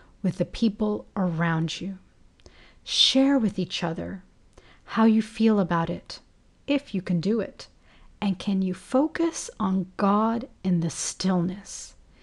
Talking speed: 130 wpm